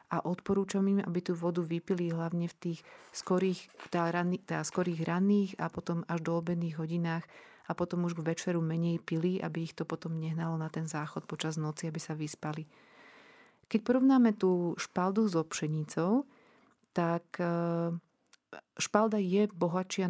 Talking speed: 145 wpm